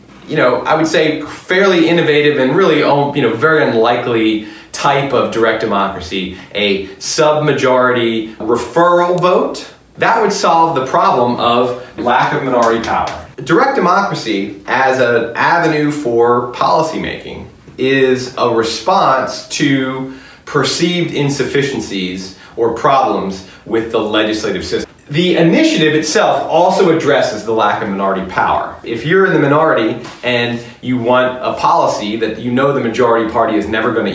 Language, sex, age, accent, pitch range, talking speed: English, male, 30-49, American, 120-155 Hz, 140 wpm